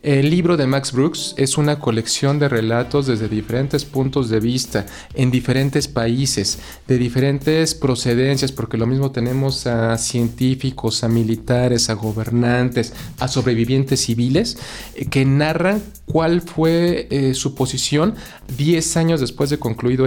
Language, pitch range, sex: Spanish, 120-150 Hz, male